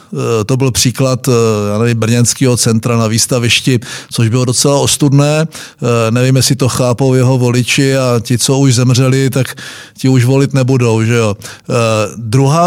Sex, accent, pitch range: male, native, 125-150 Hz